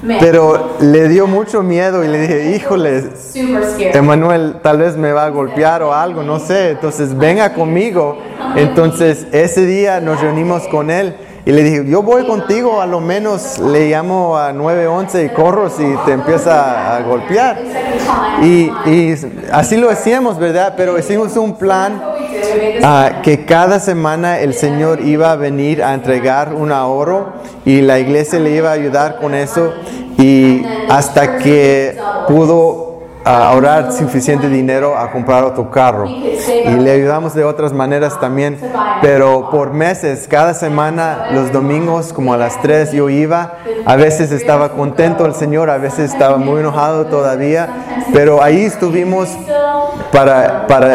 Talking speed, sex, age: 155 wpm, male, 20-39